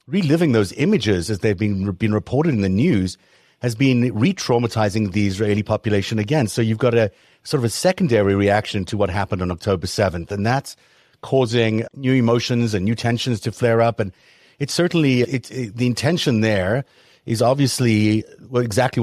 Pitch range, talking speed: 105-125 Hz, 175 wpm